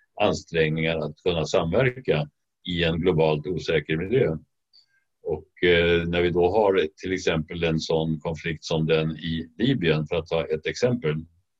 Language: English